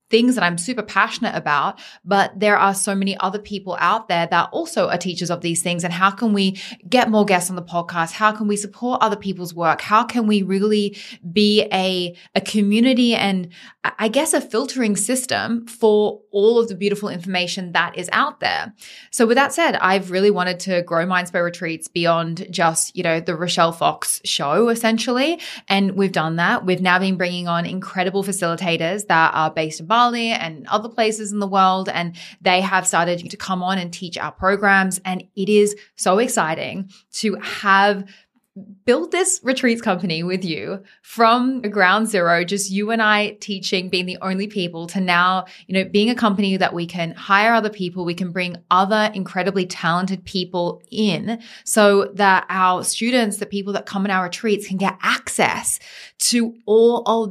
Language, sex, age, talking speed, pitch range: English, female, 20-39, 185 wpm, 180-215 Hz